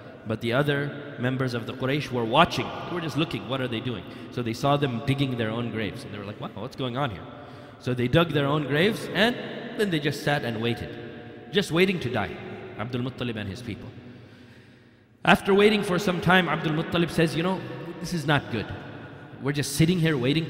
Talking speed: 220 wpm